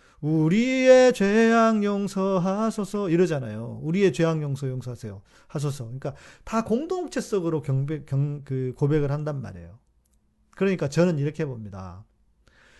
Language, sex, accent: Korean, male, native